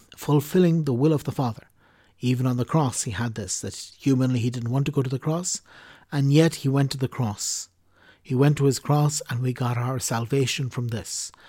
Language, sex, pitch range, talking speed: English, male, 120-145 Hz, 220 wpm